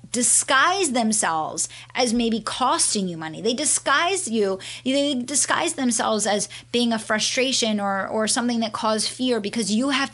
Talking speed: 155 wpm